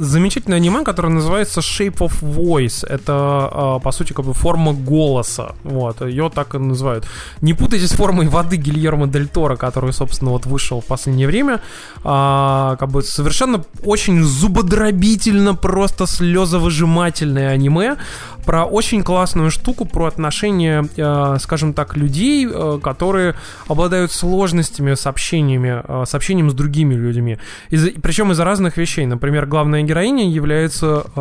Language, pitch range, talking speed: Russian, 140-175 Hz, 130 wpm